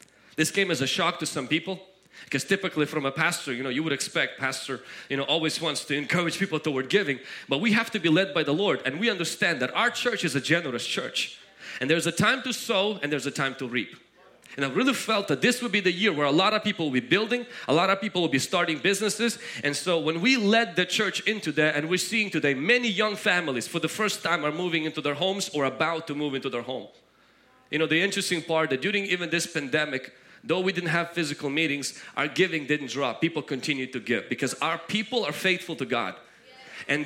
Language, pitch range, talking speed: English, 150-200 Hz, 240 wpm